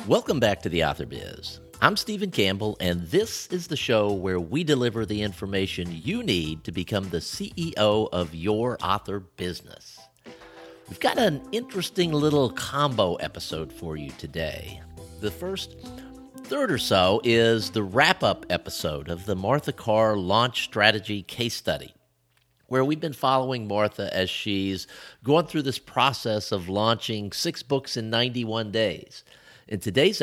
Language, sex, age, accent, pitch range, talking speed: English, male, 50-69, American, 90-130 Hz, 150 wpm